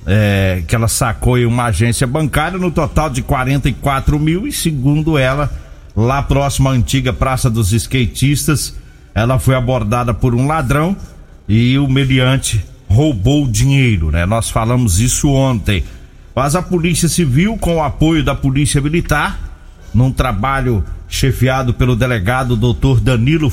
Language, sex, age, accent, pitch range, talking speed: Portuguese, male, 50-69, Brazilian, 115-145 Hz, 145 wpm